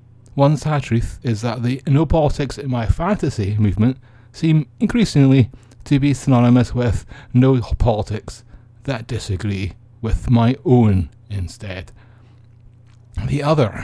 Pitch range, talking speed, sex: 105-125 Hz, 100 wpm, male